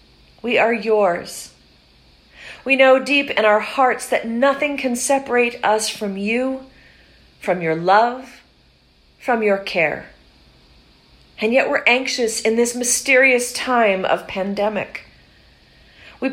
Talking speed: 120 wpm